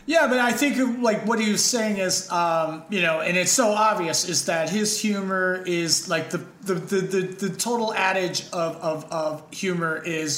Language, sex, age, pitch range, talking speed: English, male, 30-49, 155-200 Hz, 180 wpm